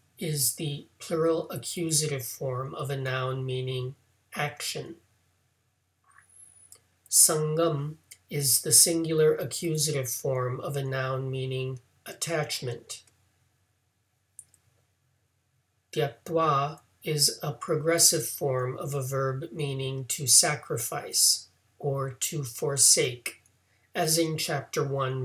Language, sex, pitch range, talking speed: English, male, 115-150 Hz, 95 wpm